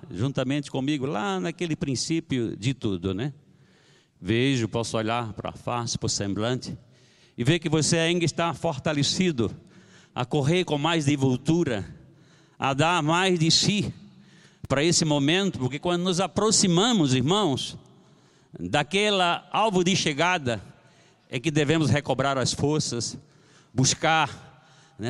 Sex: male